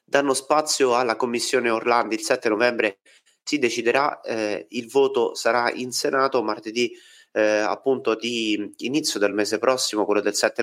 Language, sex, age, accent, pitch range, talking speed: Italian, male, 30-49, native, 105-140 Hz, 150 wpm